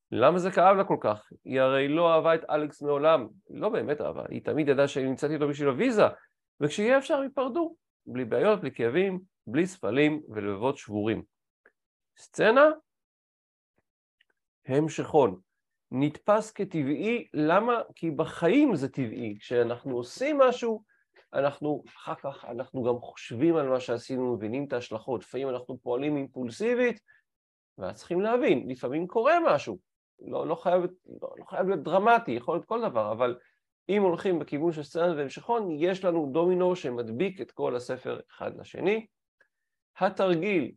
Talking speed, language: 140 wpm, Hebrew